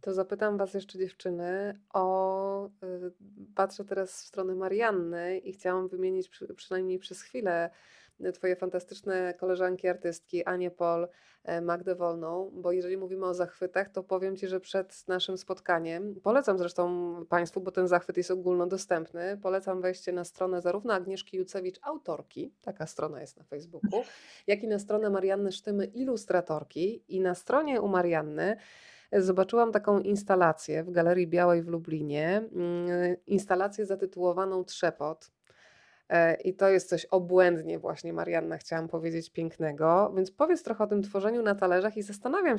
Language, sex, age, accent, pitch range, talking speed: Polish, female, 20-39, native, 175-195 Hz, 140 wpm